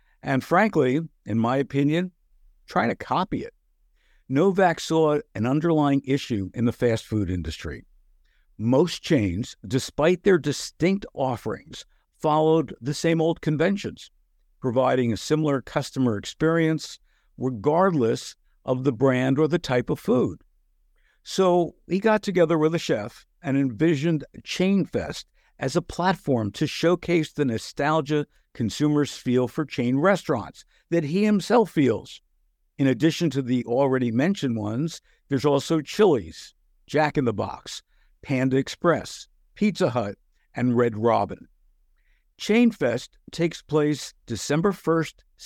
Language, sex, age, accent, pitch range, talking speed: English, male, 60-79, American, 130-170 Hz, 125 wpm